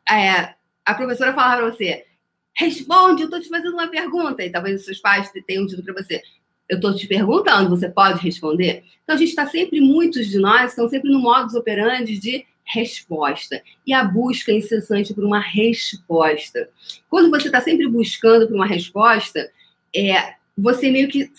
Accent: Brazilian